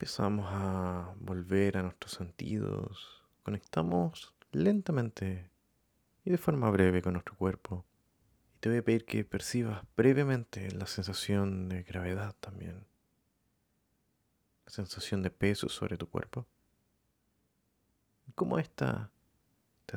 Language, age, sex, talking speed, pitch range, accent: Spanish, 30-49, male, 115 wpm, 90-110 Hz, Argentinian